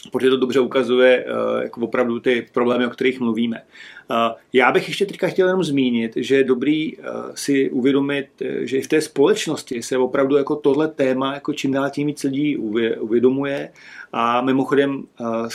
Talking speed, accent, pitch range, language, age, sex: 180 wpm, native, 125-150 Hz, Czech, 40-59, male